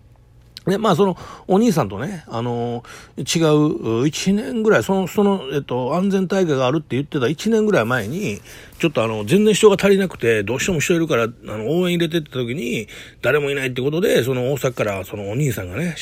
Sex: male